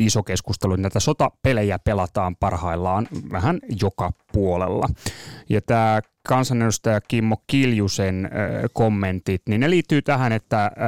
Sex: male